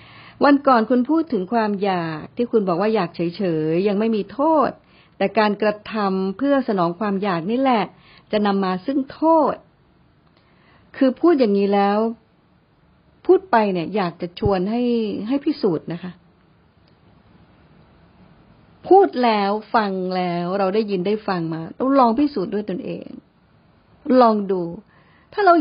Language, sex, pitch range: Thai, female, 185-230 Hz